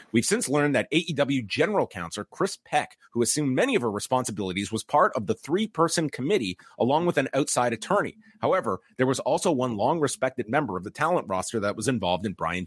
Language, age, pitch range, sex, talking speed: English, 30-49, 105-140 Hz, male, 200 wpm